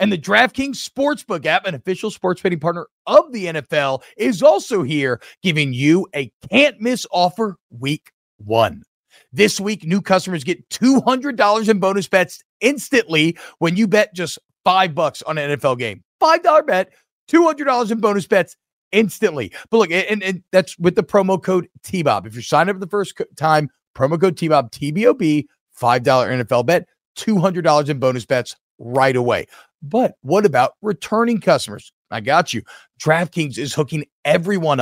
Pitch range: 150-210 Hz